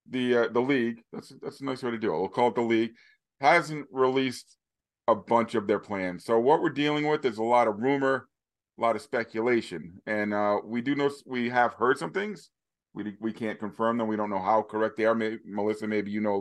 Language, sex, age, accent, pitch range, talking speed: English, male, 40-59, American, 105-130 Hz, 240 wpm